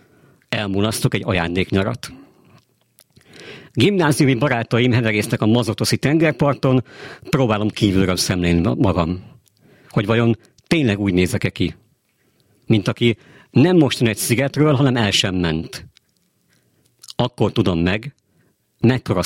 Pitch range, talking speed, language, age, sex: 95-130 Hz, 105 wpm, Hungarian, 50-69, male